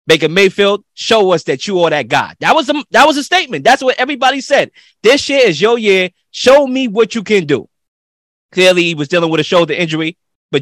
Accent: American